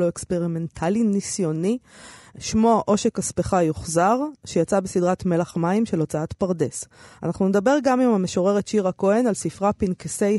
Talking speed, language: 140 wpm, Hebrew